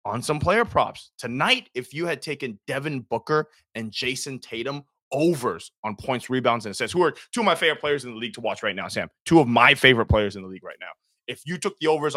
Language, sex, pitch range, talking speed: English, male, 110-135 Hz, 245 wpm